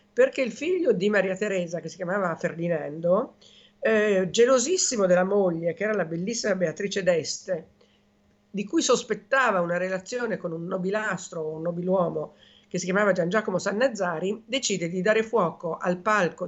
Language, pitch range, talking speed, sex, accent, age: Italian, 175-215 Hz, 155 wpm, female, native, 50-69